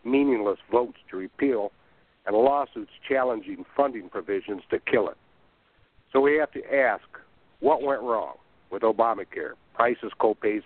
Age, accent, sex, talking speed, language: 60-79, American, male, 135 wpm, English